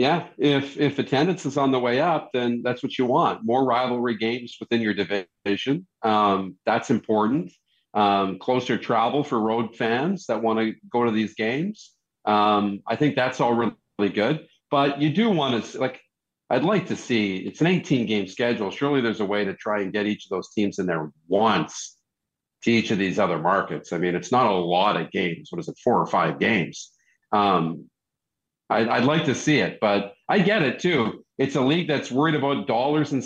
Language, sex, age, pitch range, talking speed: English, male, 50-69, 105-135 Hz, 205 wpm